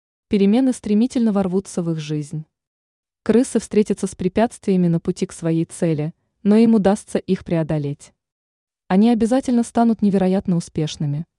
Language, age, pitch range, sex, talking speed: Russian, 20-39, 165-215 Hz, female, 130 wpm